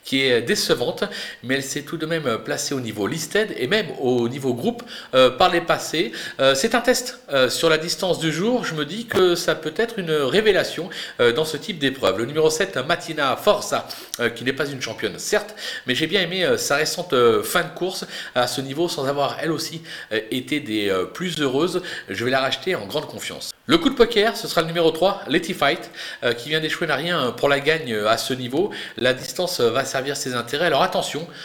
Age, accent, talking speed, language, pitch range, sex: 40-59, French, 225 wpm, French, 125-185 Hz, male